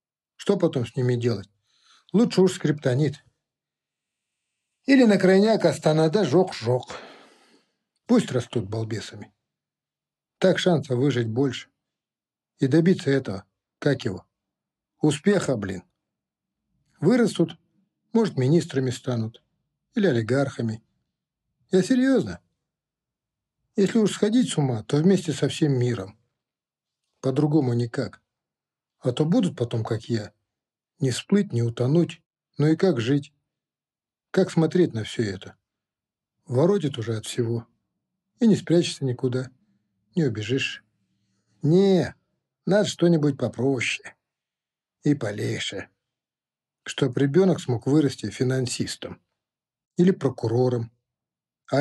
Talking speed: 105 wpm